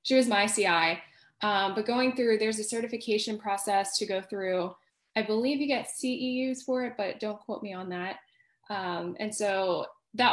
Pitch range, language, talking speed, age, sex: 200-255 Hz, English, 185 wpm, 10-29, female